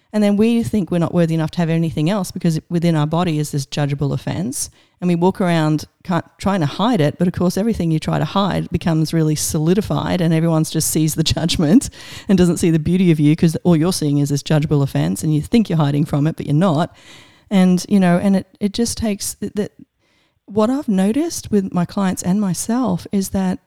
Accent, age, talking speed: Australian, 40-59, 230 wpm